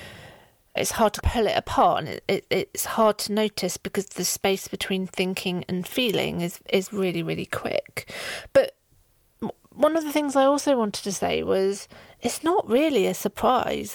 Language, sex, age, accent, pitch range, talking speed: English, female, 40-59, British, 195-230 Hz, 170 wpm